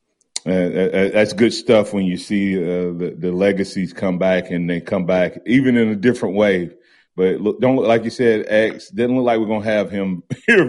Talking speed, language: 220 wpm, English